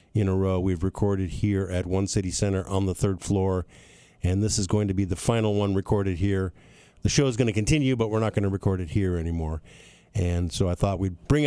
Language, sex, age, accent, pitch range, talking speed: English, male, 50-69, American, 90-110 Hz, 240 wpm